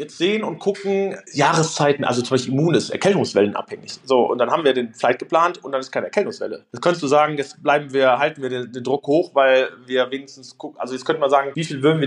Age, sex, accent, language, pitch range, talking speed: 30-49, male, German, German, 120-145 Hz, 250 wpm